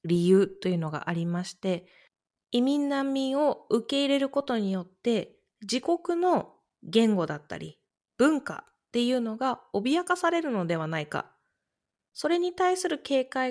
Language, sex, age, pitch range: Japanese, female, 20-39, 195-290 Hz